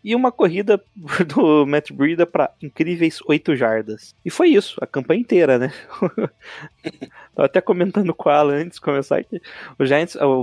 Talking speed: 165 wpm